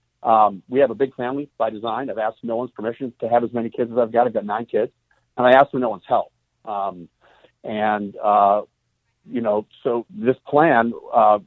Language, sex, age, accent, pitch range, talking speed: English, male, 50-69, American, 105-130 Hz, 215 wpm